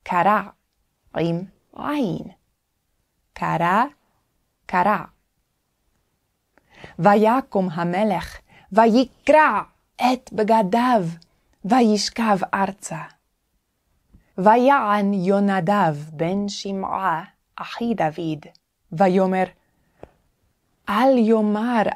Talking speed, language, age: 55 wpm, Hebrew, 20-39